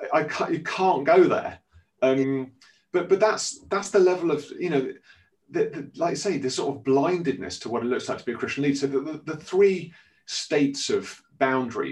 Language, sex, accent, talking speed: English, male, British, 215 wpm